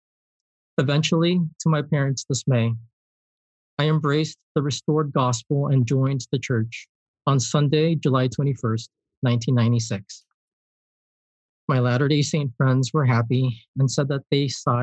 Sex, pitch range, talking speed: male, 120-150 Hz, 120 wpm